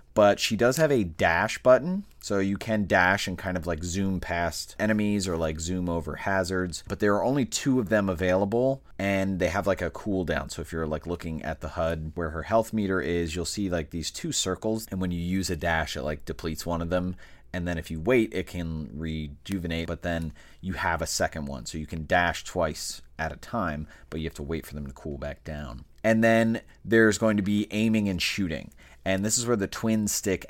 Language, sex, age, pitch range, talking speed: English, male, 30-49, 80-105 Hz, 235 wpm